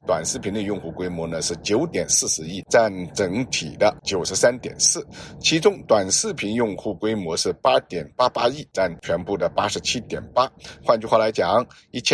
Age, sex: 50-69, male